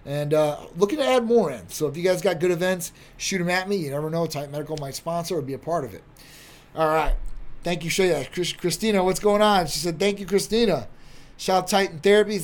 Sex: male